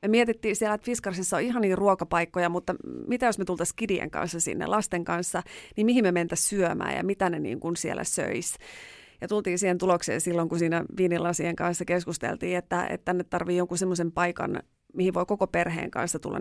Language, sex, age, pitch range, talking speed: Finnish, female, 30-49, 175-210 Hz, 200 wpm